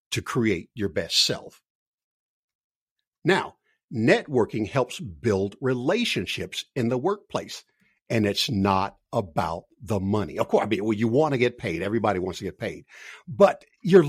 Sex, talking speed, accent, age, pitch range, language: male, 155 wpm, American, 60-79, 110-180 Hz, English